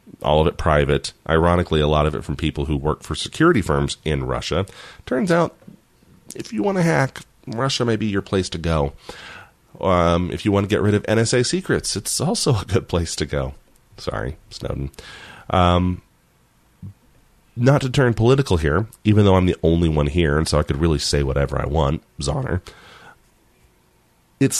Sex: male